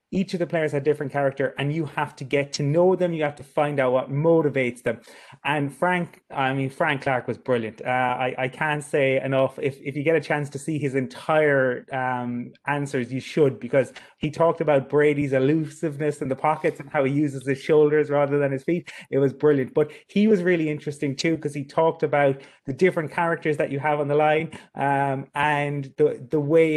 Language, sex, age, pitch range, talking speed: English, male, 30-49, 130-150 Hz, 220 wpm